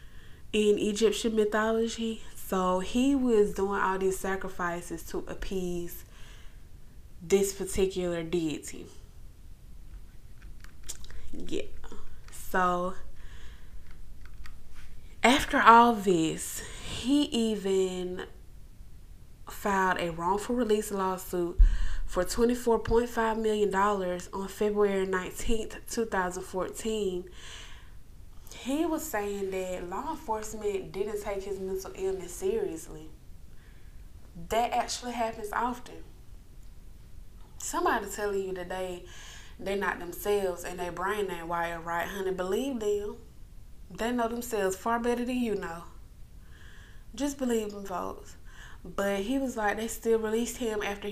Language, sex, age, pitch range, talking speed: English, female, 20-39, 180-220 Hz, 110 wpm